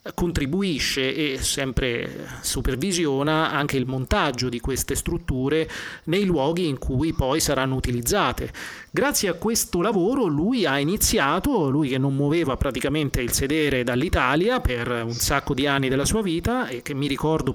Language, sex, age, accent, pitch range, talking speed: Italian, male, 30-49, native, 135-180 Hz, 150 wpm